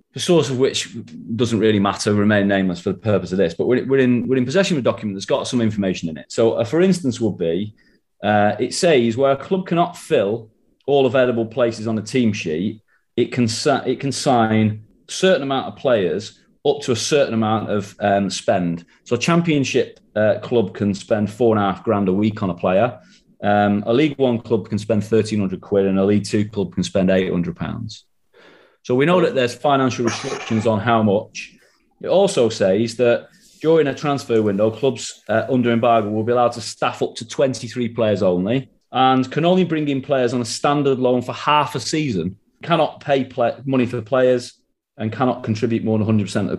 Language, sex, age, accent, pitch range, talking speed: English, male, 30-49, British, 105-130 Hz, 215 wpm